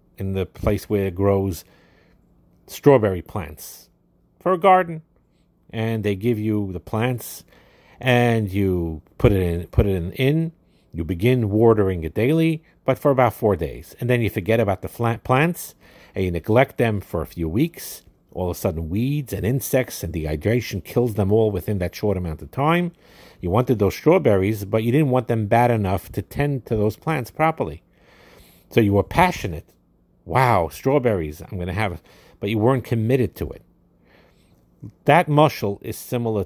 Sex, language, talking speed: male, English, 175 wpm